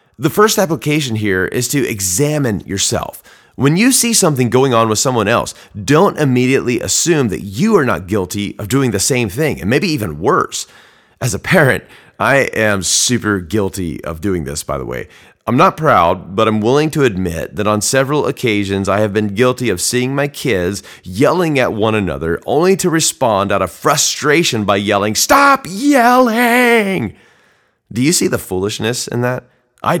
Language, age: English, 30-49